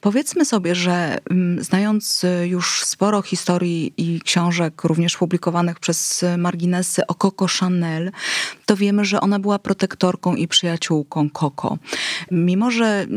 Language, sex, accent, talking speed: Polish, female, native, 125 wpm